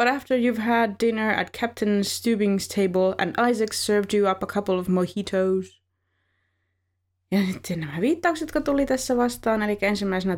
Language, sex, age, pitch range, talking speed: Finnish, female, 20-39, 160-210 Hz, 155 wpm